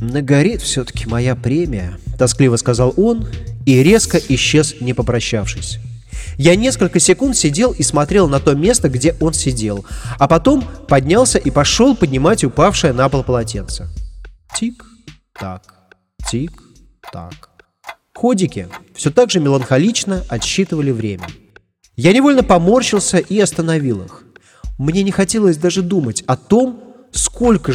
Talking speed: 125 wpm